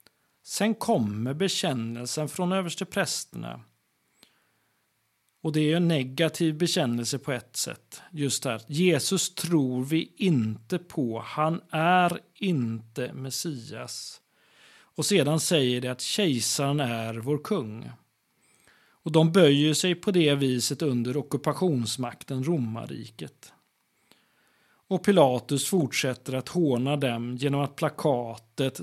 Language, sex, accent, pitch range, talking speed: Swedish, male, native, 125-160 Hz, 110 wpm